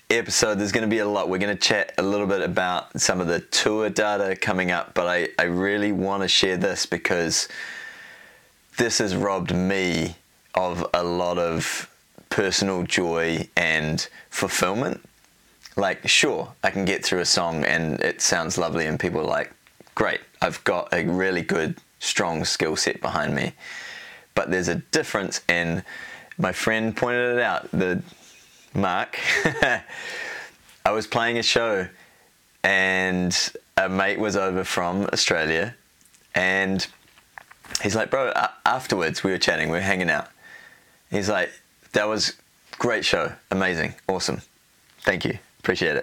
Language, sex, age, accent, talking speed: English, male, 20-39, Australian, 155 wpm